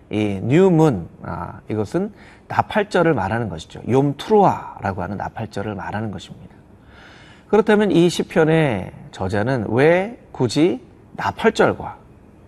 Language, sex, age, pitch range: Korean, male, 30-49, 110-170 Hz